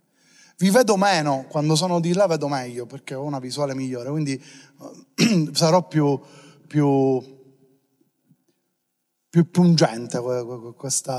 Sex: male